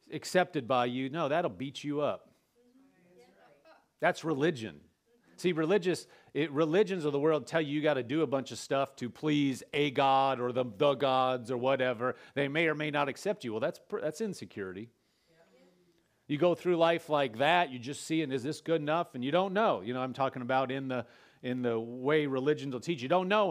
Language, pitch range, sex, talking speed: English, 135-170 Hz, male, 210 wpm